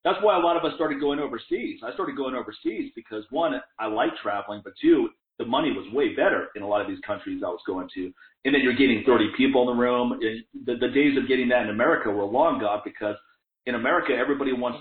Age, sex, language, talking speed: 40-59, male, English, 245 wpm